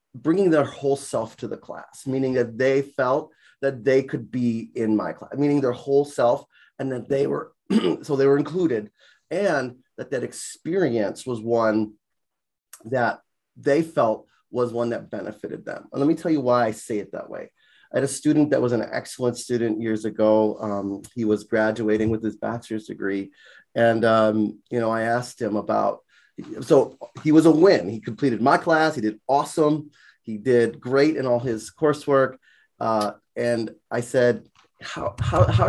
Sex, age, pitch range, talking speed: male, 30-49, 110-140 Hz, 180 wpm